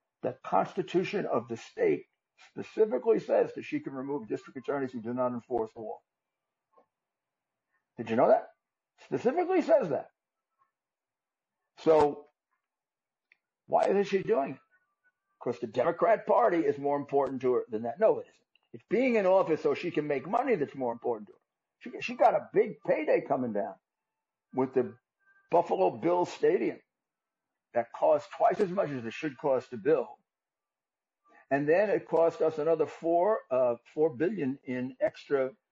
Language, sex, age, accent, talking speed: English, male, 60-79, American, 160 wpm